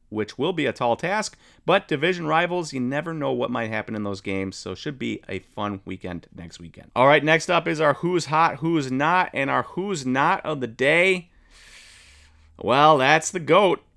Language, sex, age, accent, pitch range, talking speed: English, male, 30-49, American, 115-165 Hz, 205 wpm